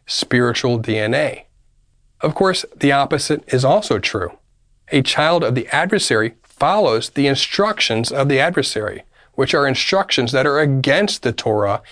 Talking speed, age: 140 wpm, 40-59